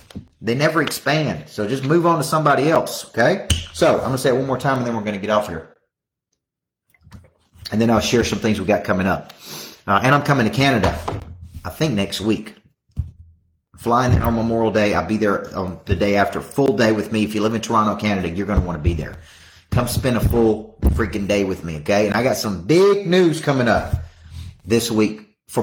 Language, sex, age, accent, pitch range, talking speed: English, male, 40-59, American, 90-115 Hz, 225 wpm